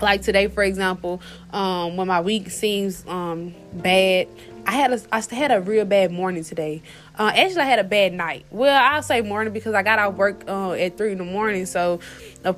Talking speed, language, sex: 220 wpm, English, female